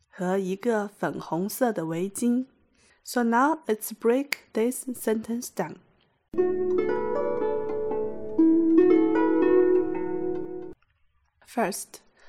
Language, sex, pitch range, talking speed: English, female, 190-280 Hz, 65 wpm